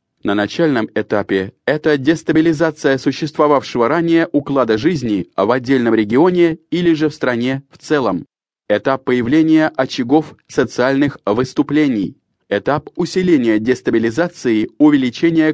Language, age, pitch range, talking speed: English, 20-39, 120-160 Hz, 105 wpm